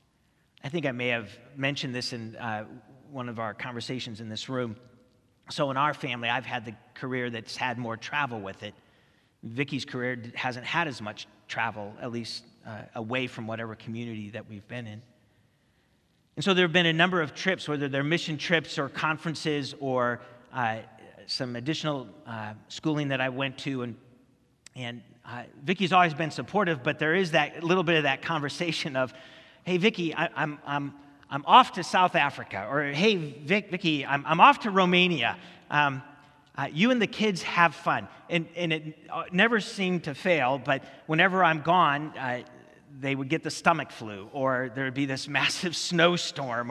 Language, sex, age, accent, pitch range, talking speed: English, male, 40-59, American, 120-165 Hz, 180 wpm